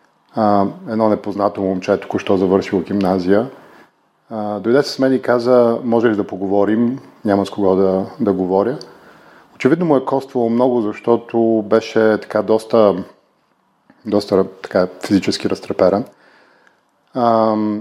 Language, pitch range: Bulgarian, 100-120 Hz